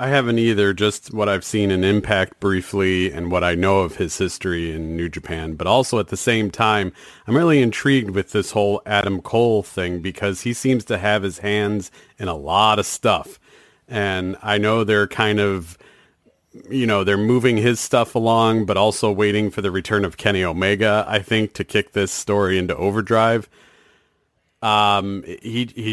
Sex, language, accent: male, English, American